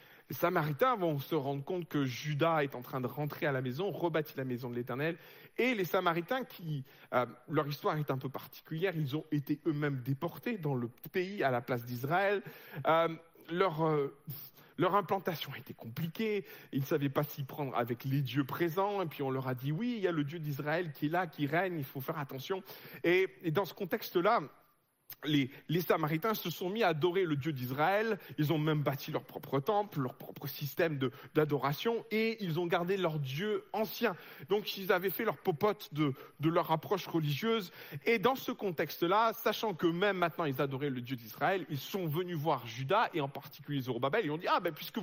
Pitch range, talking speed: 145-195 Hz, 210 wpm